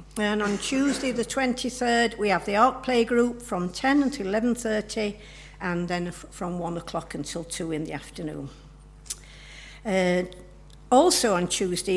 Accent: British